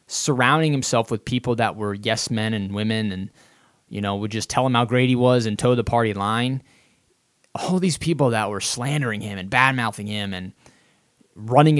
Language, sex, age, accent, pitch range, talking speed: English, male, 20-39, American, 105-130 Hz, 195 wpm